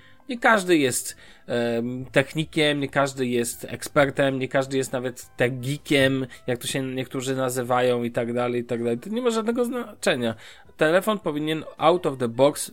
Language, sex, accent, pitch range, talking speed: Polish, male, native, 125-160 Hz, 170 wpm